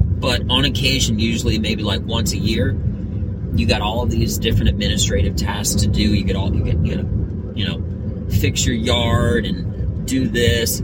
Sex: male